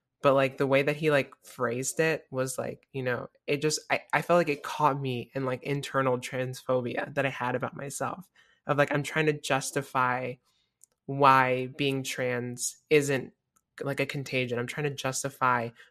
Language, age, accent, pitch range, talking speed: English, 20-39, American, 125-145 Hz, 180 wpm